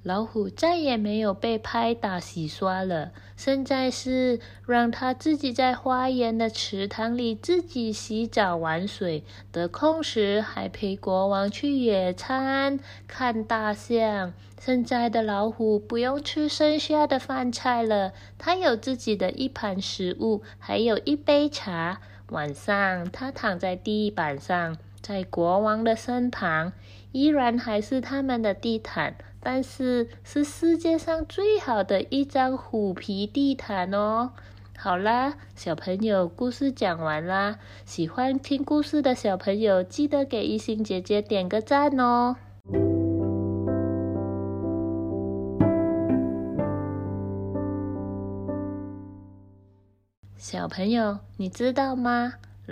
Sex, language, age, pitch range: female, Chinese, 20-39, 155-255 Hz